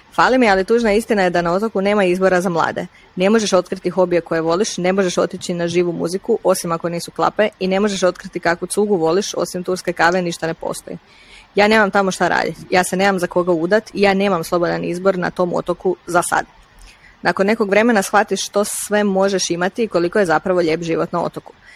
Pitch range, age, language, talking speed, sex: 175-200 Hz, 20-39, Croatian, 220 wpm, female